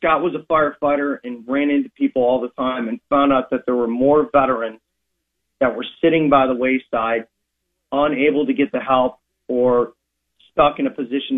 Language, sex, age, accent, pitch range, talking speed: English, male, 40-59, American, 120-150 Hz, 185 wpm